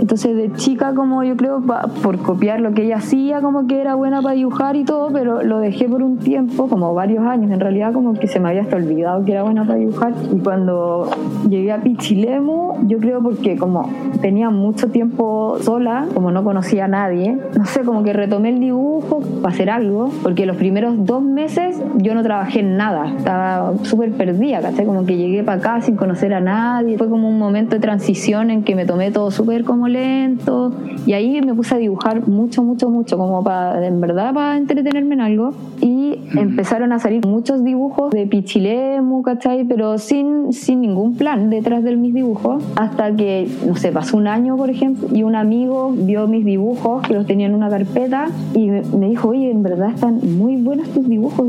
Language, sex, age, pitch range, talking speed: Spanish, female, 20-39, 205-255 Hz, 205 wpm